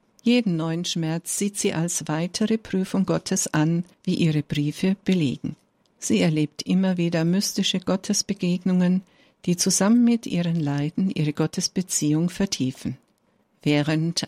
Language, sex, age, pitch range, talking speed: German, female, 60-79, 155-200 Hz, 120 wpm